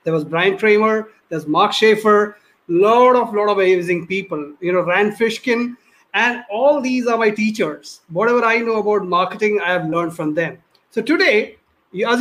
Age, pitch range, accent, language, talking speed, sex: 30-49, 180-230 Hz, Indian, English, 175 wpm, male